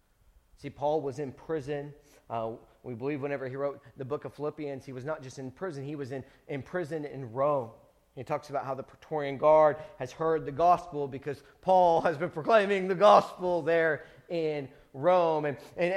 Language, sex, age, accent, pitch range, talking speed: English, male, 40-59, American, 145-175 Hz, 190 wpm